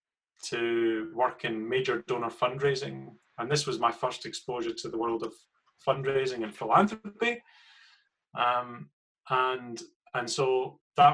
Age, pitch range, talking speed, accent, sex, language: 30-49, 115-155 Hz, 130 wpm, British, male, English